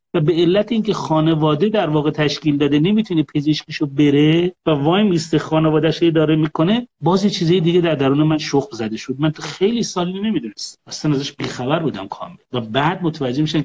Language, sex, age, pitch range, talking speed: Persian, male, 30-49, 150-205 Hz, 185 wpm